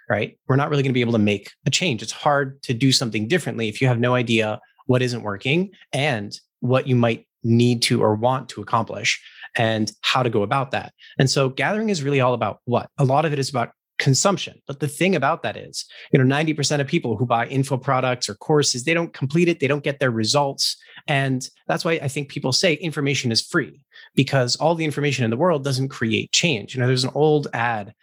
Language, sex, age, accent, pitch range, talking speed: English, male, 30-49, American, 115-145 Hz, 235 wpm